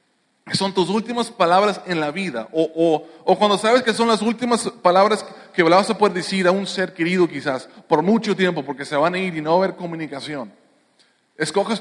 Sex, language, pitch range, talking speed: male, English, 160-195 Hz, 220 wpm